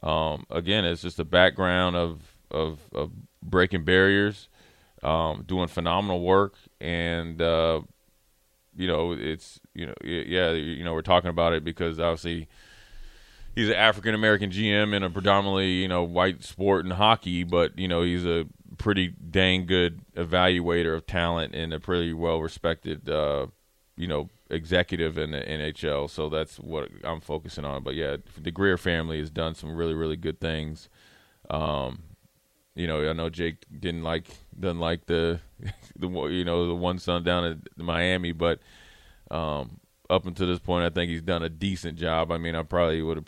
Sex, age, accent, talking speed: male, 20-39, American, 170 wpm